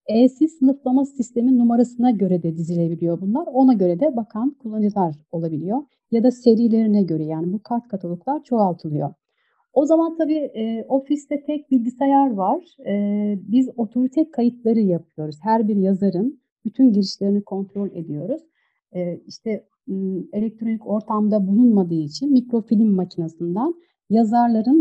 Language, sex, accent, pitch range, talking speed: Turkish, female, native, 190-255 Hz, 130 wpm